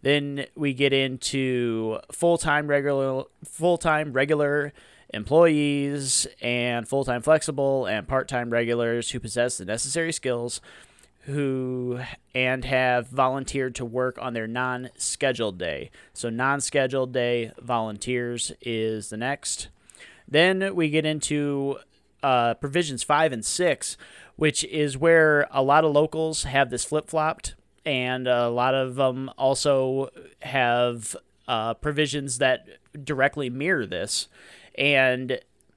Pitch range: 120-145 Hz